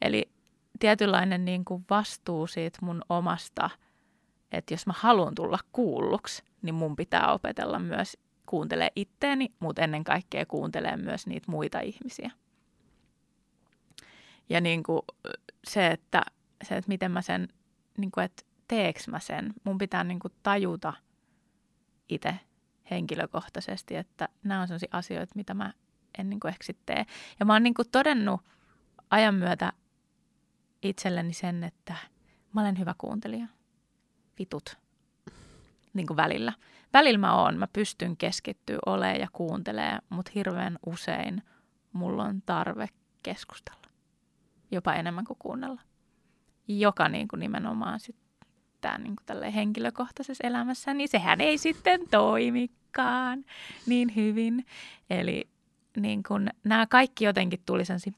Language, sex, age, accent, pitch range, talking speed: Finnish, female, 20-39, native, 180-235 Hz, 130 wpm